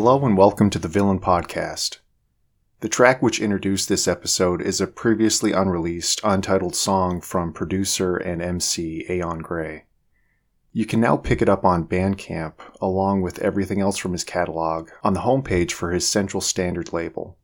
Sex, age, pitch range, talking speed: male, 30-49, 90-110 Hz, 165 wpm